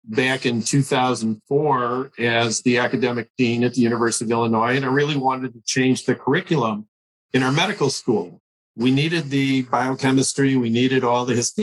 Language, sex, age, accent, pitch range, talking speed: English, male, 50-69, American, 125-155 Hz, 170 wpm